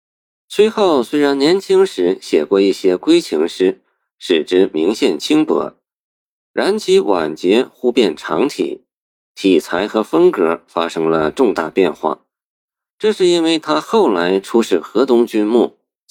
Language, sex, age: Chinese, male, 50-69